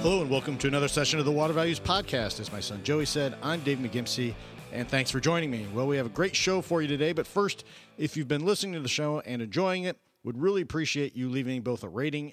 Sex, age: male, 50-69